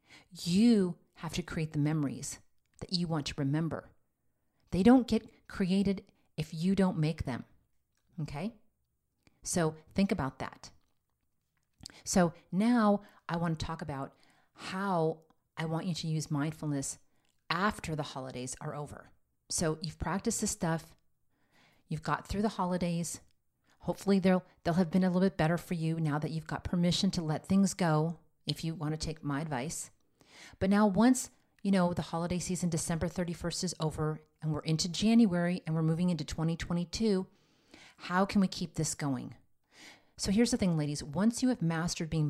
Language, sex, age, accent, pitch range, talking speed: English, female, 40-59, American, 155-185 Hz, 165 wpm